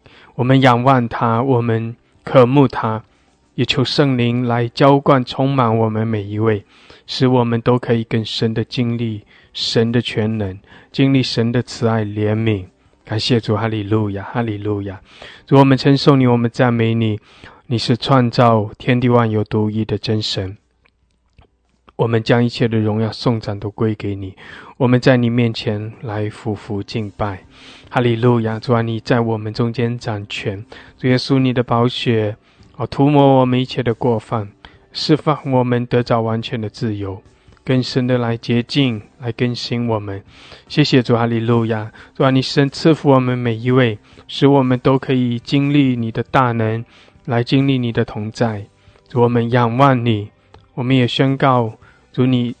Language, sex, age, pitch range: English, male, 20-39, 110-130 Hz